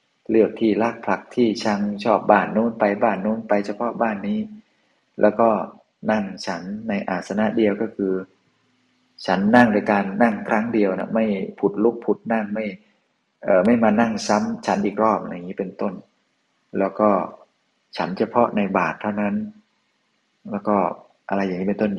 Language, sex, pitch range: Thai, male, 95-110 Hz